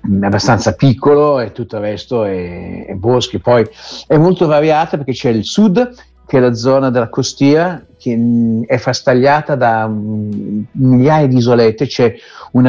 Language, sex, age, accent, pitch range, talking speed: Italian, male, 50-69, native, 110-135 Hz, 155 wpm